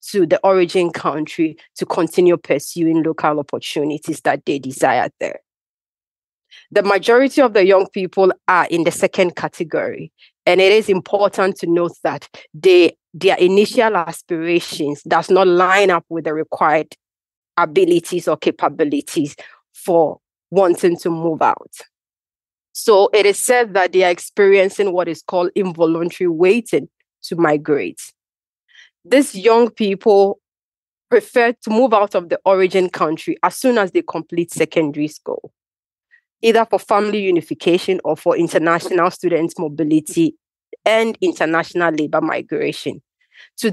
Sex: female